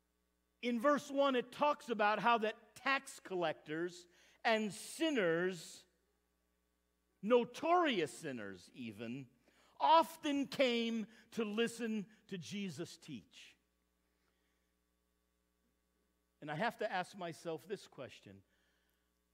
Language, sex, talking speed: English, male, 95 wpm